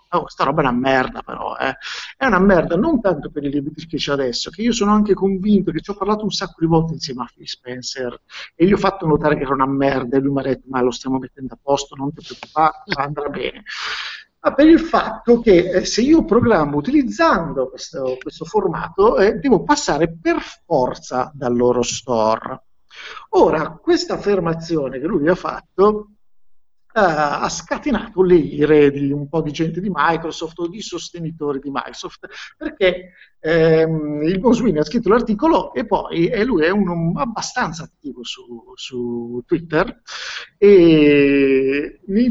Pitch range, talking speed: 145-210 Hz, 175 wpm